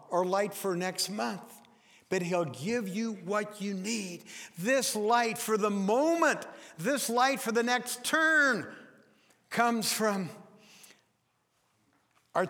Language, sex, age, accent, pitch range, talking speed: English, male, 60-79, American, 170-220 Hz, 125 wpm